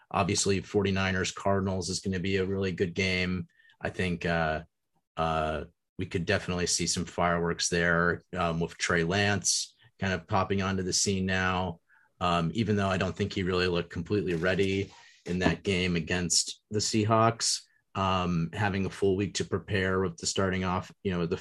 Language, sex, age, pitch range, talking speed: English, male, 30-49, 85-105 Hz, 180 wpm